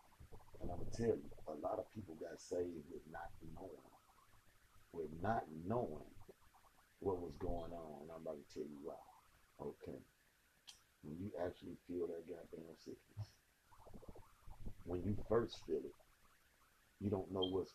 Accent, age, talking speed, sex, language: American, 40-59, 150 wpm, male, English